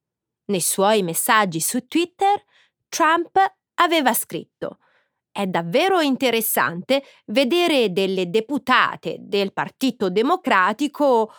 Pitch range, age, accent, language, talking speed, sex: 185-290 Hz, 30-49, native, Italian, 90 wpm, female